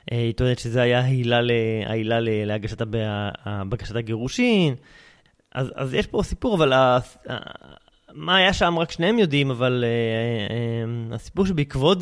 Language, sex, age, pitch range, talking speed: Hebrew, male, 20-39, 115-140 Hz, 110 wpm